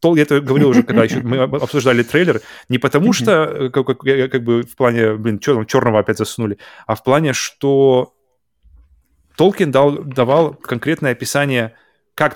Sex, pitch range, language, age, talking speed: male, 110-140 Hz, Russian, 20-39, 155 wpm